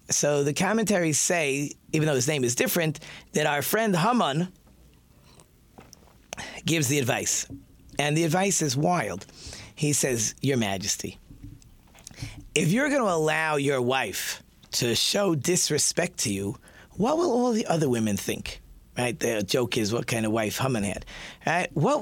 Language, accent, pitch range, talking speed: English, American, 125-185 Hz, 155 wpm